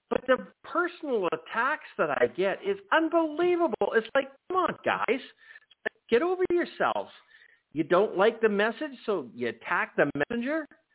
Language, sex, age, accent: English, male, 50-69, American